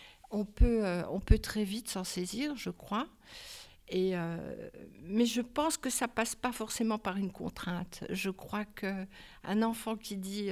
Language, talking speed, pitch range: French, 175 wpm, 190-235 Hz